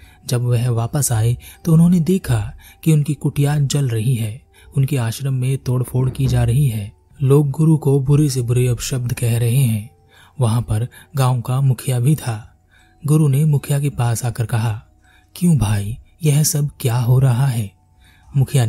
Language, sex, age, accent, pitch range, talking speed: Hindi, male, 30-49, native, 115-145 Hz, 175 wpm